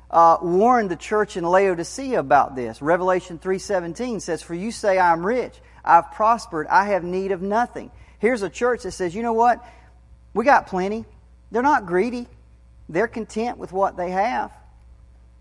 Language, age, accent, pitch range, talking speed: English, 40-59, American, 115-190 Hz, 175 wpm